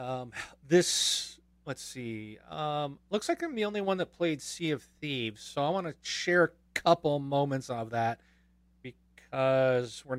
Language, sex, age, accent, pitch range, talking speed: English, male, 40-59, American, 105-160 Hz, 165 wpm